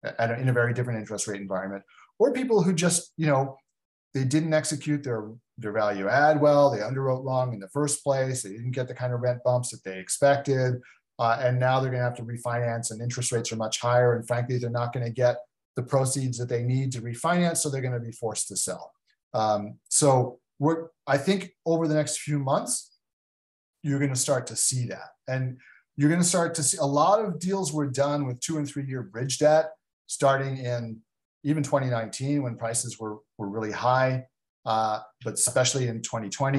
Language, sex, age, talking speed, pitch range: English, male, 40-59, 200 wpm, 115-145 Hz